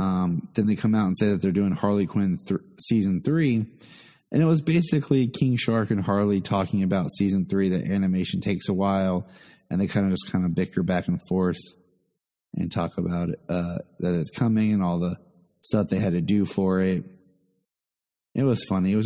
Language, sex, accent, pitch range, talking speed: English, male, American, 90-110 Hz, 210 wpm